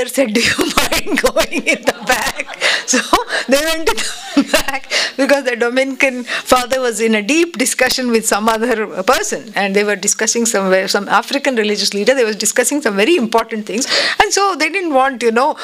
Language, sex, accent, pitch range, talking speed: English, female, Indian, 230-290 Hz, 190 wpm